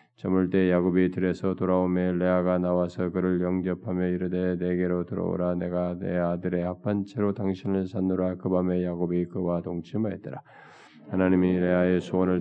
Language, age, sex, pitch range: Korean, 20-39, male, 90-95 Hz